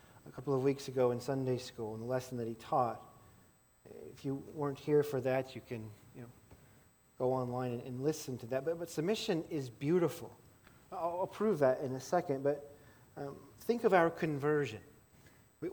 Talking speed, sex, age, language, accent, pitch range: 190 wpm, male, 40-59, English, American, 120-150 Hz